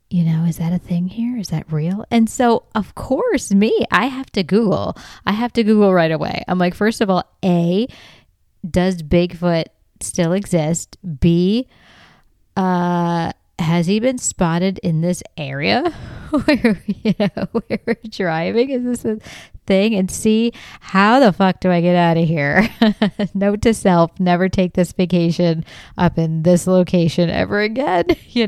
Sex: female